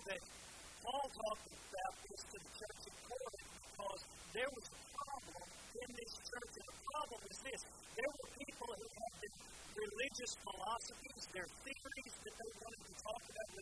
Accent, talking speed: American, 170 wpm